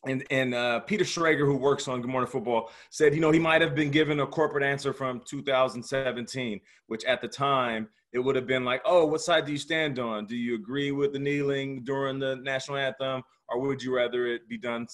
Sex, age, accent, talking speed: male, 30-49, American, 230 wpm